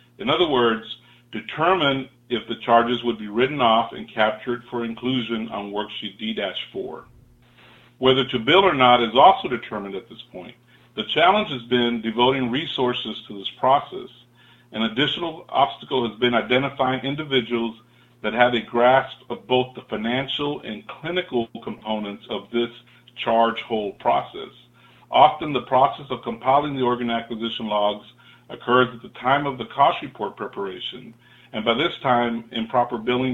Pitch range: 115-125 Hz